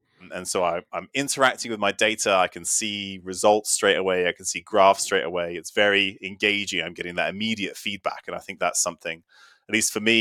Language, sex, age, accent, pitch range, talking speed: Finnish, male, 20-39, British, 90-110 Hz, 215 wpm